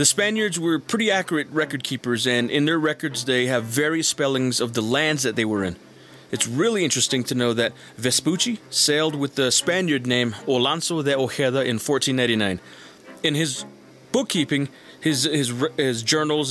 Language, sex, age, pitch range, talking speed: English, male, 30-49, 120-150 Hz, 165 wpm